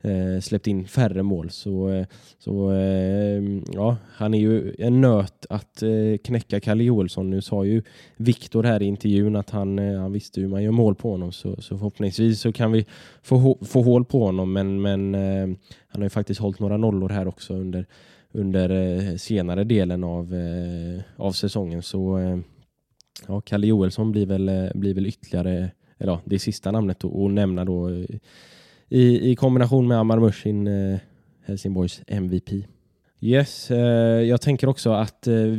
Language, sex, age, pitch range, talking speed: Swedish, male, 10-29, 95-115 Hz, 160 wpm